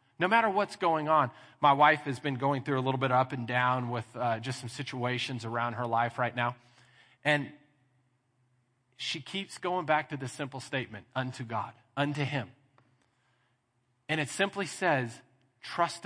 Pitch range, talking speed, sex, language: 120-165 Hz, 170 wpm, male, English